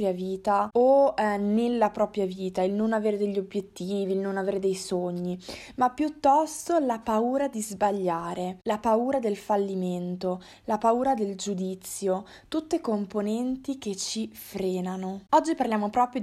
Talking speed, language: 140 wpm, Italian